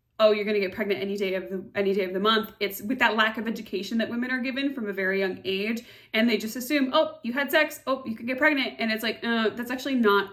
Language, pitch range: English, 195-220 Hz